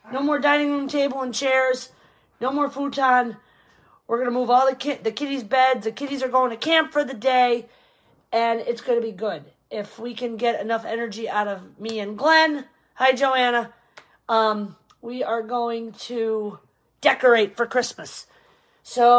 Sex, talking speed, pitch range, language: female, 180 wpm, 225-280 Hz, English